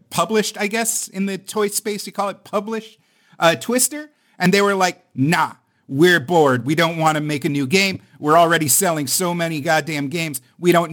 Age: 50-69